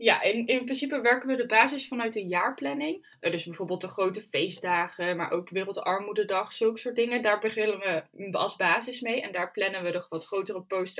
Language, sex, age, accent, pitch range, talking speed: Dutch, female, 10-29, Dutch, 165-210 Hz, 195 wpm